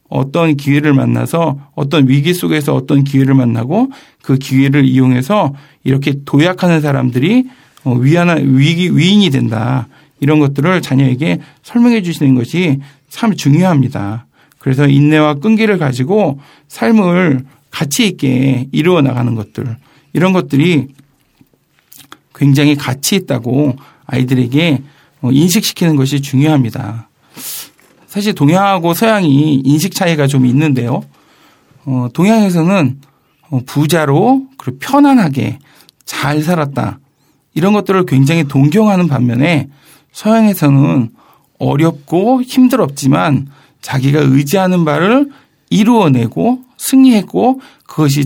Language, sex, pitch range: Korean, male, 135-175 Hz